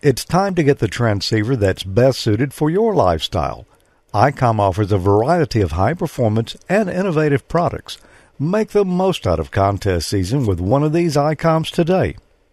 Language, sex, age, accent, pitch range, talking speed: English, male, 50-69, American, 110-170 Hz, 165 wpm